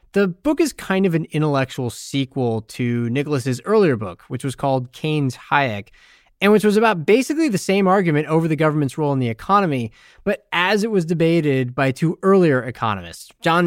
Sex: male